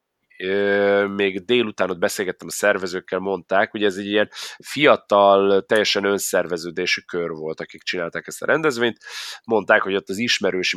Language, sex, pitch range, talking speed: Hungarian, male, 95-115 Hz, 145 wpm